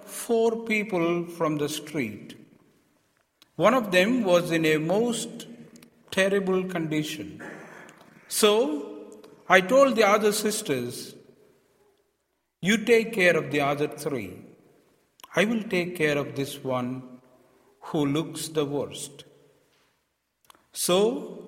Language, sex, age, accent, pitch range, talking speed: English, male, 50-69, Indian, 130-180 Hz, 110 wpm